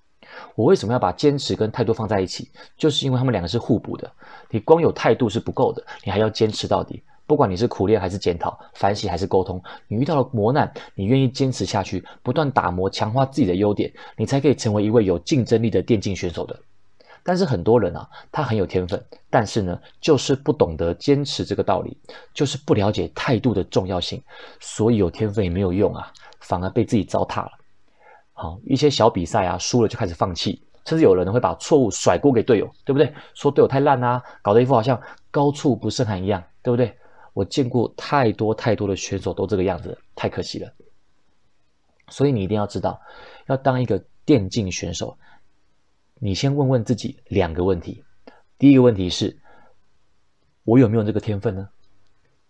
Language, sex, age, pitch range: Chinese, male, 30-49, 100-130 Hz